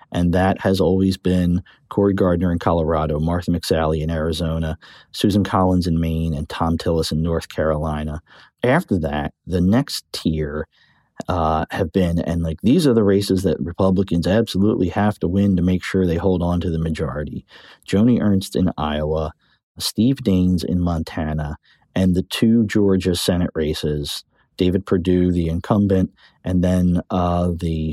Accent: American